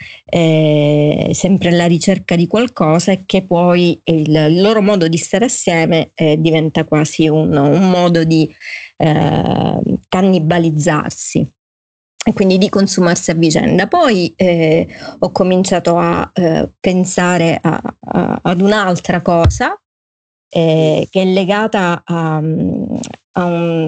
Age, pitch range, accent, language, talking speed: 30-49, 165-200 Hz, native, Italian, 115 wpm